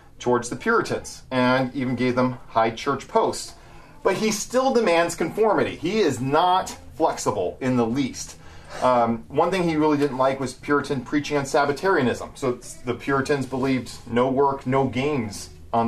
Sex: male